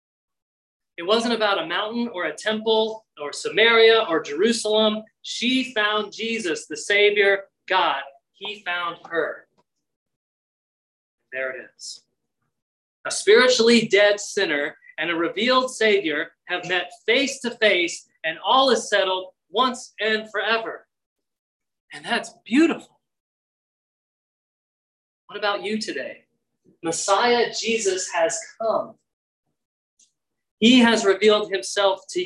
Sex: male